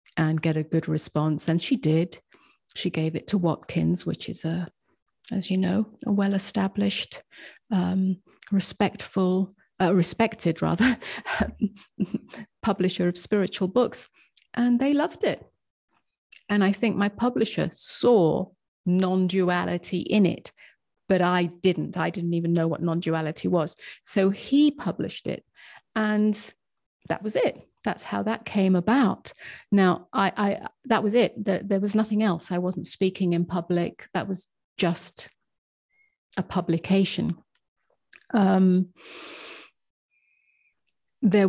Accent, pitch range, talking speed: British, 170-205 Hz, 130 wpm